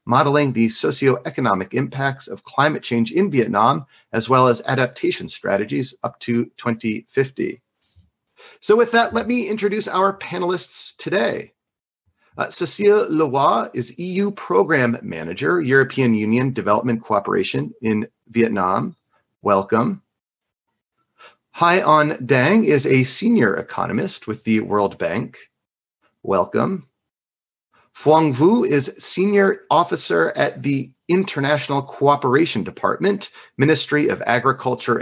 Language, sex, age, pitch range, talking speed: English, male, 30-49, 120-180 Hz, 110 wpm